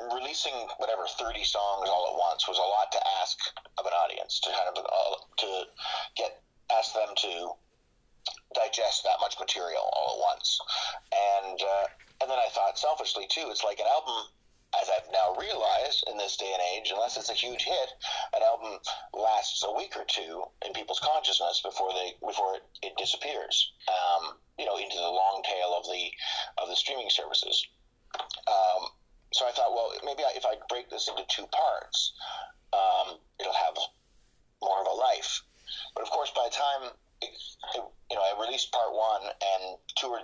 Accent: American